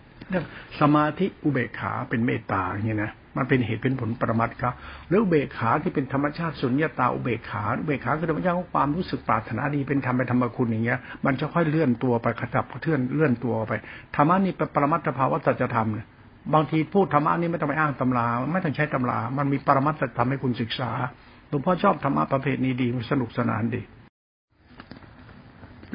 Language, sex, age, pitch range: Thai, male, 70-89, 120-150 Hz